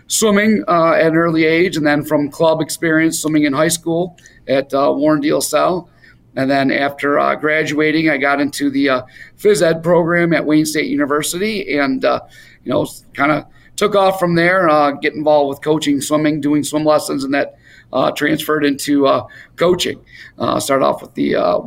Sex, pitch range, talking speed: male, 145-165 Hz, 190 wpm